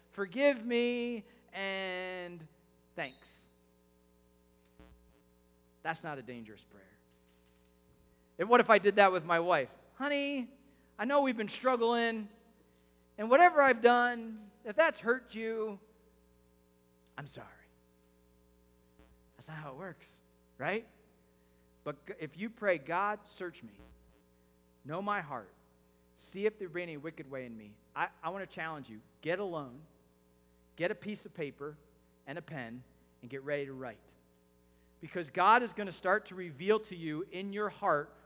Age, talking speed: 40-59, 145 wpm